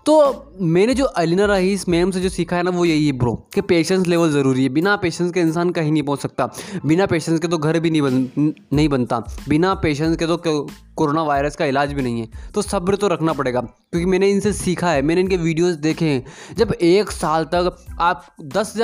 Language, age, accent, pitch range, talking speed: Hindi, 20-39, native, 155-195 Hz, 220 wpm